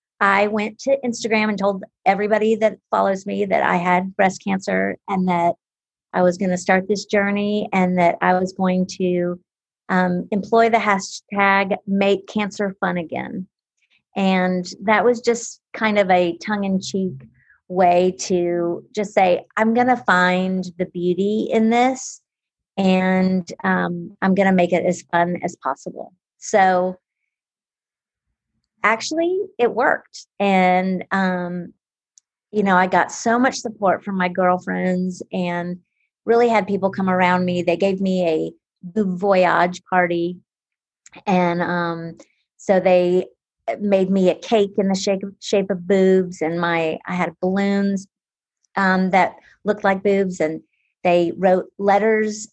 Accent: American